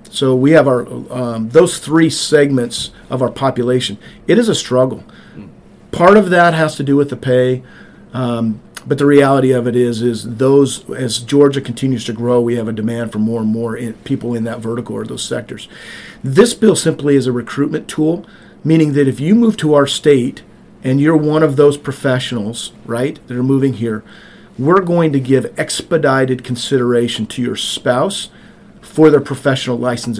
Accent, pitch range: American, 125-150 Hz